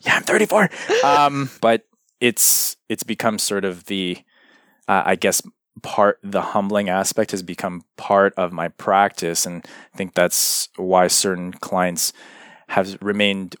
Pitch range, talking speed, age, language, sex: 90-105 Hz, 145 wpm, 20-39, English, male